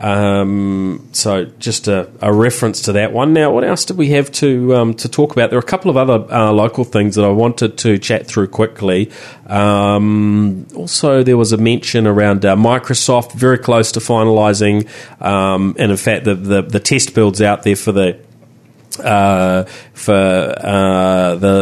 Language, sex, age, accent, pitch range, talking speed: English, male, 30-49, Australian, 100-125 Hz, 185 wpm